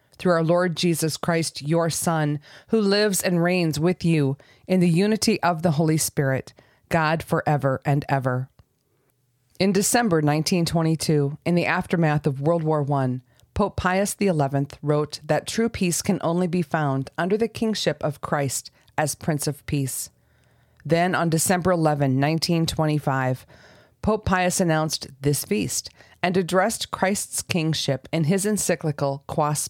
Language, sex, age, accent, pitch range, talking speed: English, female, 40-59, American, 140-180 Hz, 145 wpm